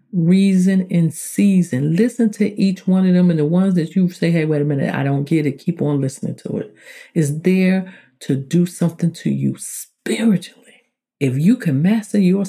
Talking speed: 195 wpm